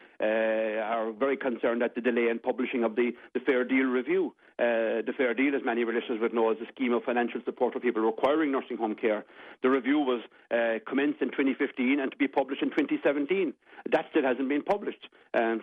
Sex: male